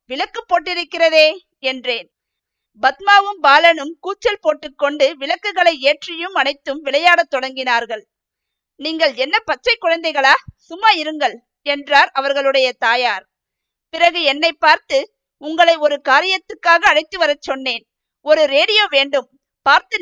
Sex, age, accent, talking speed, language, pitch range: female, 50-69, native, 105 wpm, Tamil, 275-350 Hz